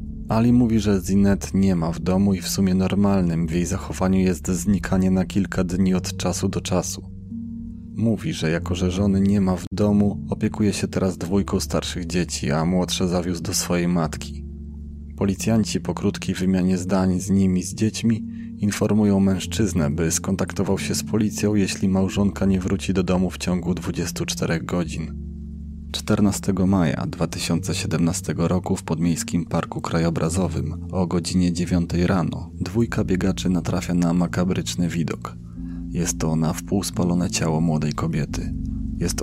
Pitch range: 85-95 Hz